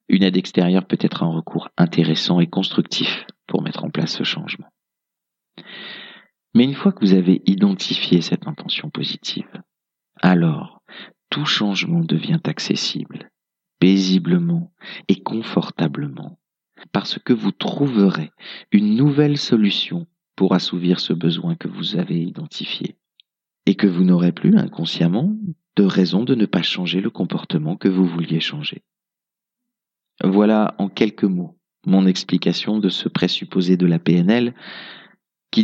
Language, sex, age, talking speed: French, male, 40-59, 135 wpm